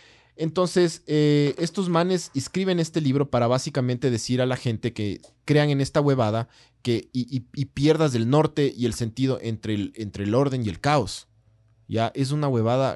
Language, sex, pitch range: Spanish, male, 110-145 Hz